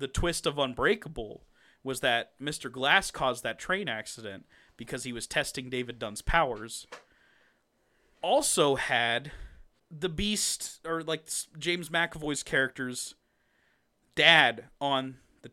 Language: English